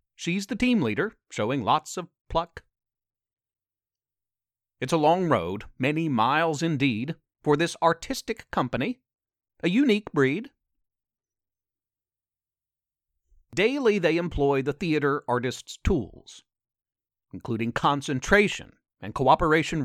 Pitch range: 110-165 Hz